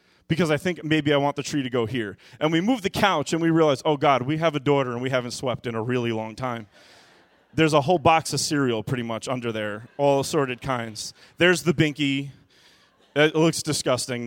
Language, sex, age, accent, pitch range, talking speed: English, male, 30-49, American, 130-180 Hz, 225 wpm